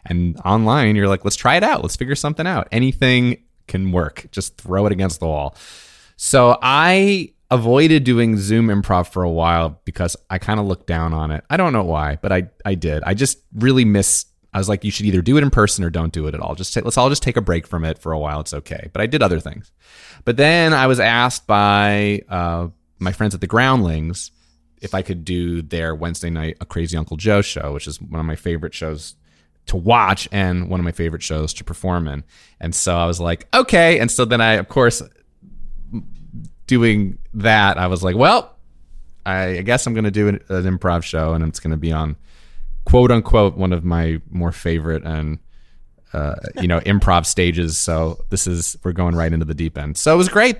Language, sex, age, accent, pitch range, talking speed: English, male, 30-49, American, 80-110 Hz, 225 wpm